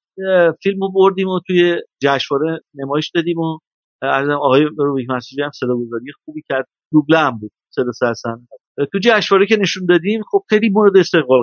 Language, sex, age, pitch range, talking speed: Persian, male, 50-69, 130-170 Hz, 145 wpm